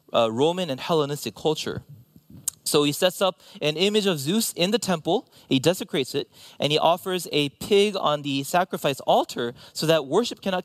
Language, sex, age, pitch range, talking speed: English, male, 30-49, 140-195 Hz, 180 wpm